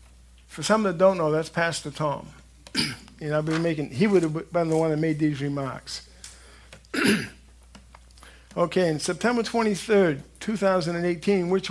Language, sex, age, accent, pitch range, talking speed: English, male, 50-69, American, 135-175 Hz, 145 wpm